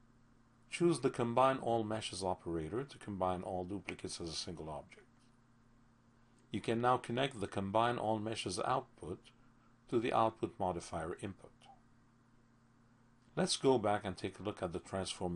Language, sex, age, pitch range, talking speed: English, male, 50-69, 100-120 Hz, 150 wpm